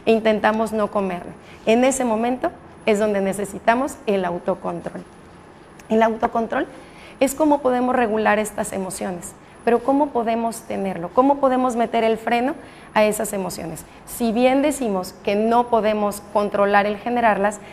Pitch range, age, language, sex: 205-245 Hz, 30-49, Spanish, female